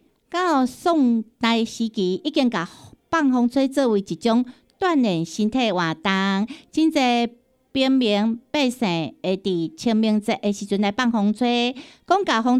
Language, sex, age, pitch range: Chinese, female, 50-69, 200-280 Hz